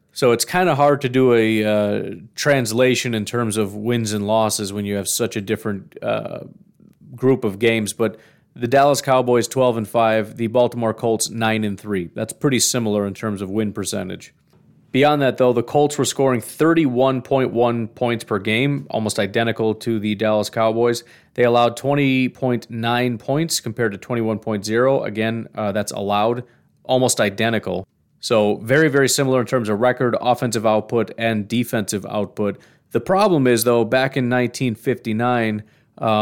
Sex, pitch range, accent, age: male, 110-130 Hz, American, 30-49